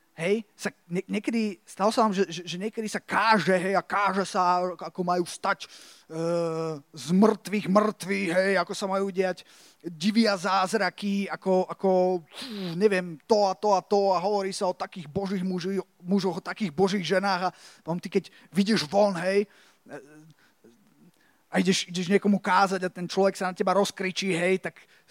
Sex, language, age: male, Slovak, 20-39